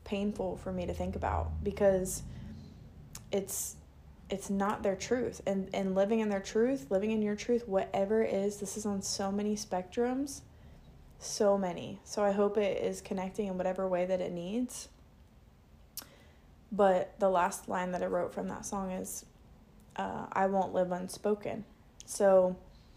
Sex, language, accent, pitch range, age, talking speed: female, English, American, 185-205 Hz, 20-39, 160 wpm